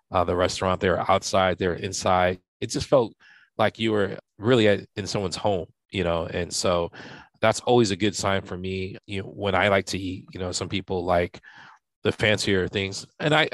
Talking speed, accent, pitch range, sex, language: 210 wpm, American, 95-110 Hz, male, English